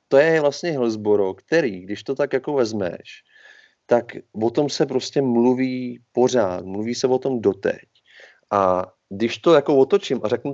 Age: 30-49